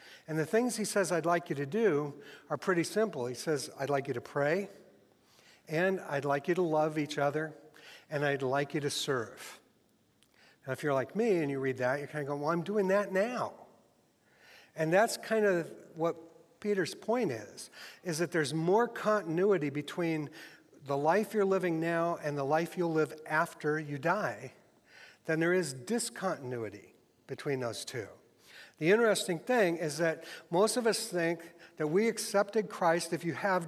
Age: 60-79